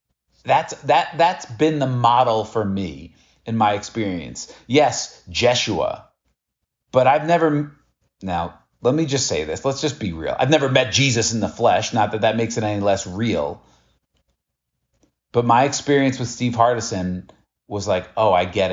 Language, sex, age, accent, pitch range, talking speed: English, male, 40-59, American, 100-130 Hz, 165 wpm